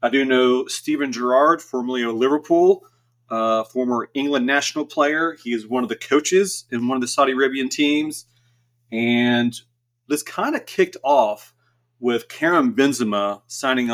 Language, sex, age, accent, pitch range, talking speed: English, male, 30-49, American, 120-160 Hz, 155 wpm